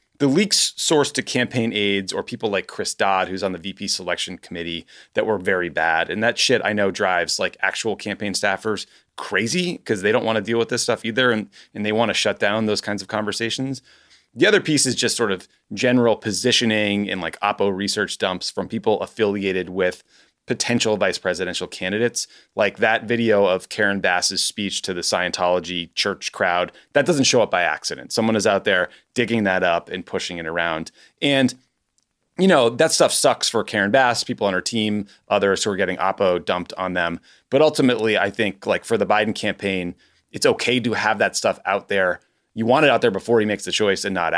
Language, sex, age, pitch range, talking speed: English, male, 30-49, 95-120 Hz, 210 wpm